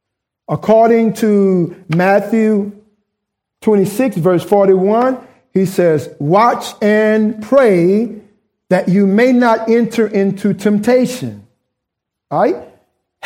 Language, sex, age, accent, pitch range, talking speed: English, male, 50-69, American, 170-215 Hz, 85 wpm